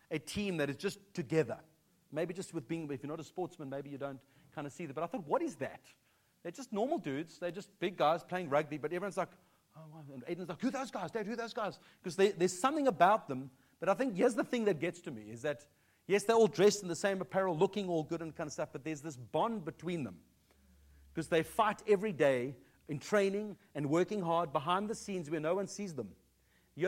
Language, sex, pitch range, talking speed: English, male, 145-195 Hz, 250 wpm